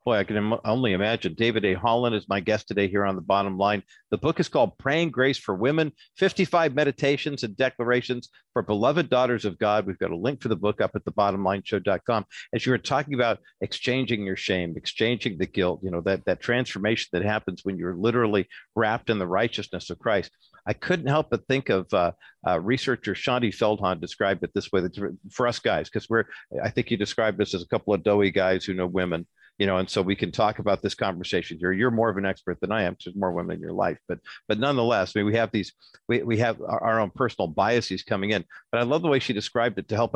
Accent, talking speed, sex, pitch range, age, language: American, 240 wpm, male, 95-120 Hz, 50-69, English